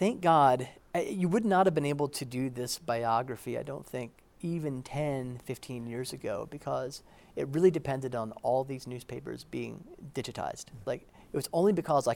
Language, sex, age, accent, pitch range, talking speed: English, male, 30-49, American, 115-155 Hz, 185 wpm